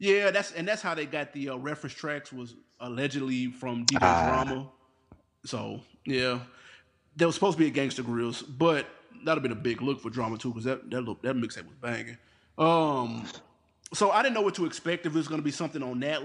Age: 20-39